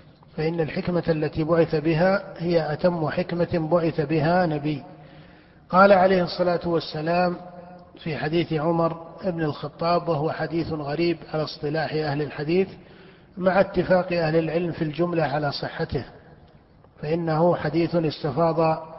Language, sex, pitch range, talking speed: Arabic, male, 155-175 Hz, 120 wpm